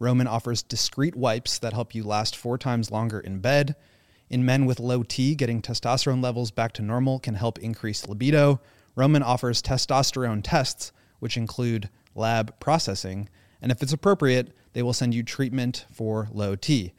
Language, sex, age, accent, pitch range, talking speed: English, male, 30-49, American, 105-130 Hz, 170 wpm